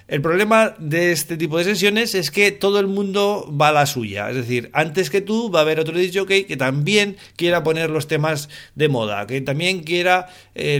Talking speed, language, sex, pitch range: 210 wpm, Spanish, male, 130-175 Hz